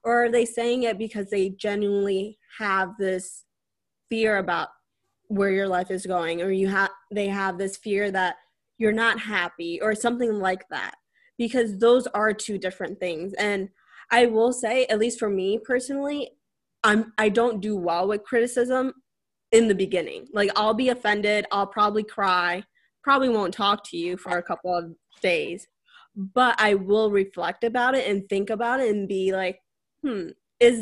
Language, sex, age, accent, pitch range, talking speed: English, female, 10-29, American, 190-235 Hz, 175 wpm